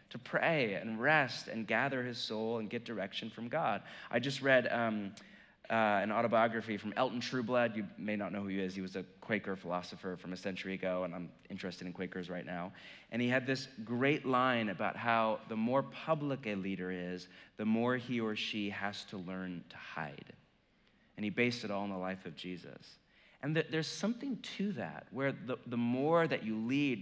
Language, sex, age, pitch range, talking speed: English, male, 30-49, 100-130 Hz, 205 wpm